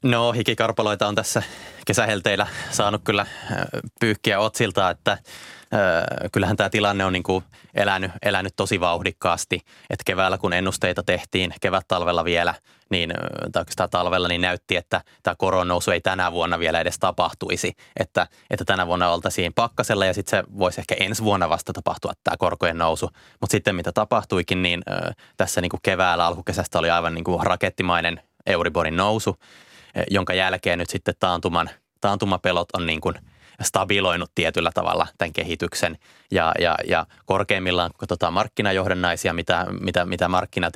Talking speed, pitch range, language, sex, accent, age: 150 wpm, 85-100 Hz, Finnish, male, native, 20-39